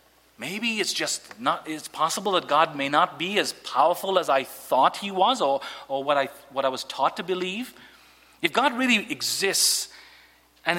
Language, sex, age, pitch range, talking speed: English, male, 40-59, 160-220 Hz, 185 wpm